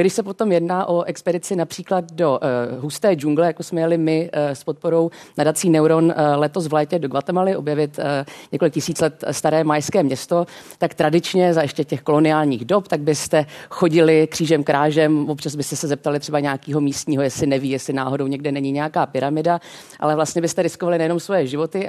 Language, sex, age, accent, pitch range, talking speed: Czech, female, 40-59, native, 150-175 Hz, 185 wpm